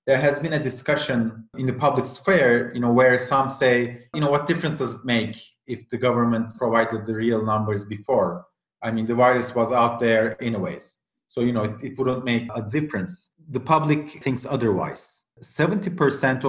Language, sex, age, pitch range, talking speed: English, male, 30-49, 115-135 Hz, 185 wpm